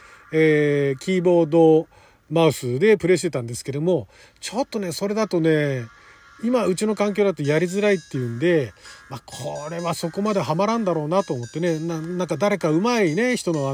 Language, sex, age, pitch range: Japanese, male, 40-59, 140-205 Hz